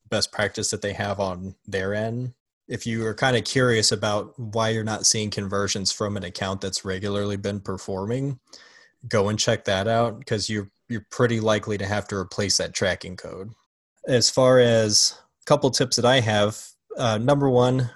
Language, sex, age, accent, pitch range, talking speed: English, male, 20-39, American, 100-115 Hz, 185 wpm